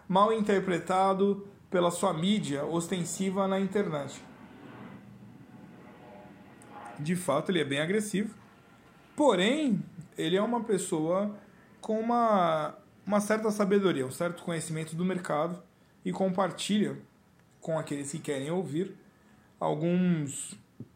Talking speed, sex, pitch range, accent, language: 105 wpm, male, 155-195 Hz, Brazilian, Portuguese